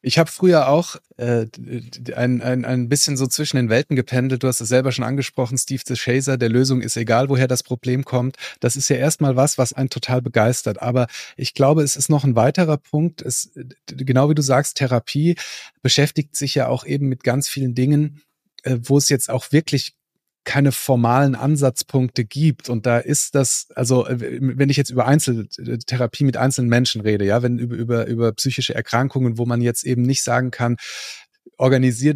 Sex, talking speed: male, 190 wpm